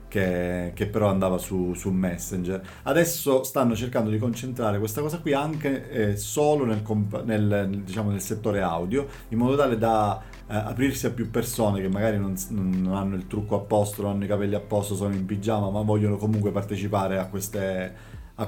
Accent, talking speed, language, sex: native, 190 wpm, Italian, male